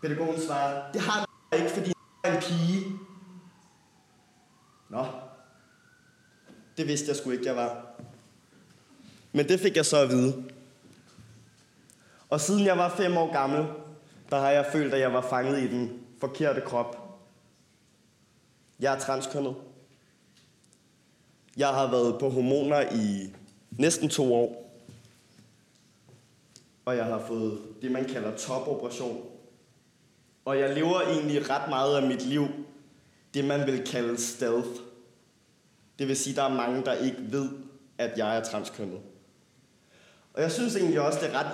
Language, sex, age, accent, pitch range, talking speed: Danish, male, 20-39, native, 120-145 Hz, 145 wpm